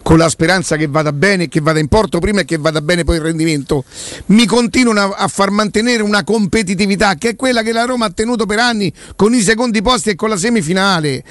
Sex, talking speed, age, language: male, 235 wpm, 50-69, Italian